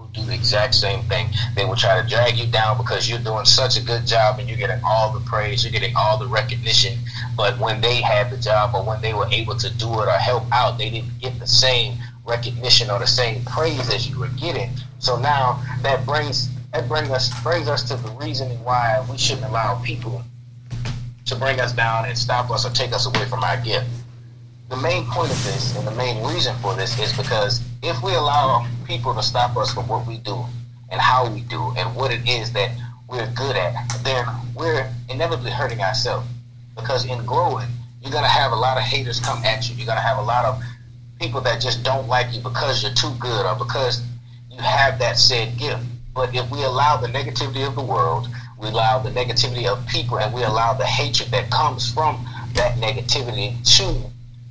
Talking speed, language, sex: 215 wpm, English, male